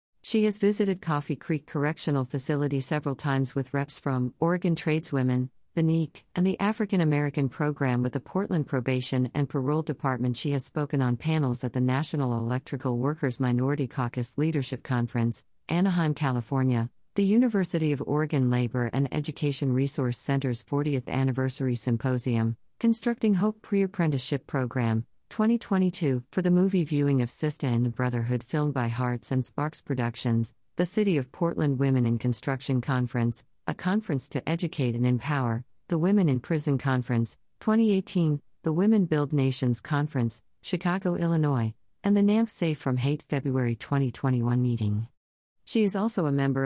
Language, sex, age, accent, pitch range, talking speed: English, female, 40-59, American, 125-160 Hz, 150 wpm